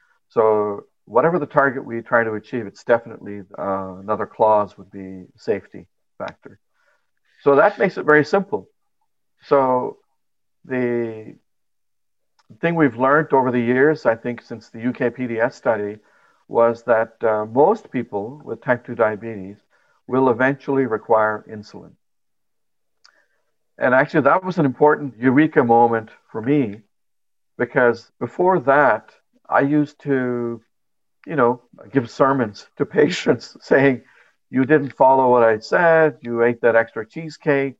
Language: English